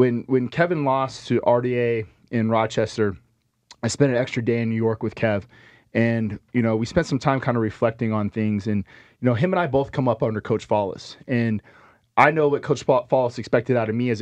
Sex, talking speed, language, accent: male, 225 wpm, English, American